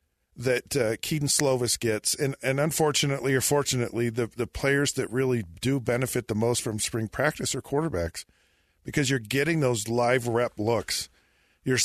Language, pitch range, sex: English, 110-130 Hz, male